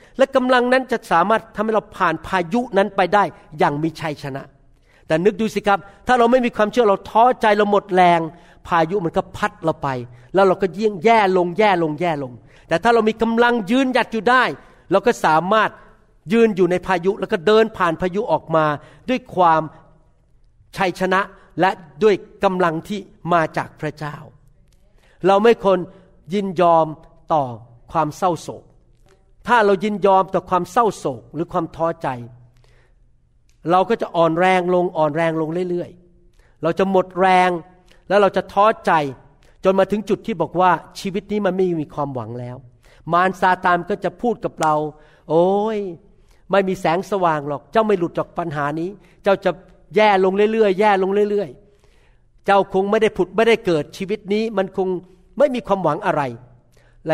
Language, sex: Thai, male